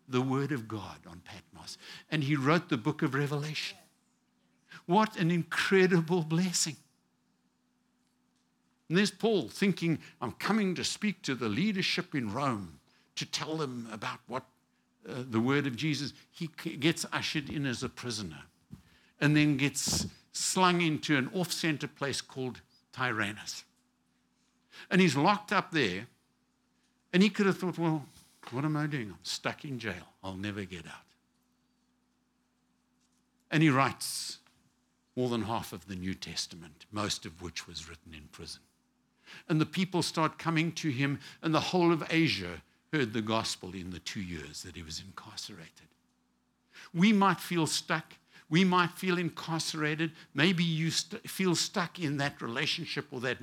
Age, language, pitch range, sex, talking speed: 60-79, English, 115-170 Hz, male, 155 wpm